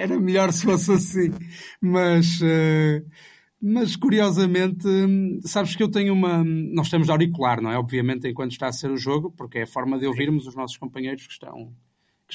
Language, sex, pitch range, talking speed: Portuguese, male, 130-170 Hz, 185 wpm